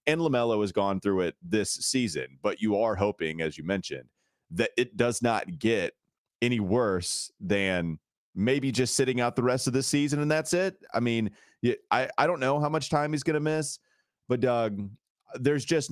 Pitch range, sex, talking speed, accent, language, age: 95-130 Hz, male, 190 wpm, American, English, 30-49